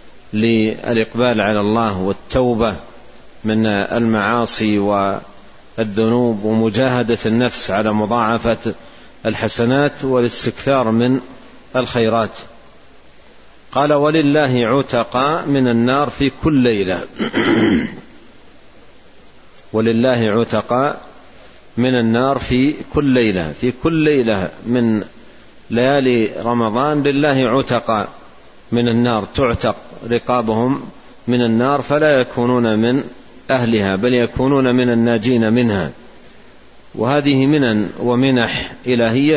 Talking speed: 85 wpm